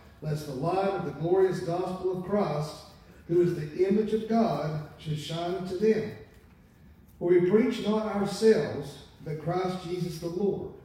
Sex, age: male, 40-59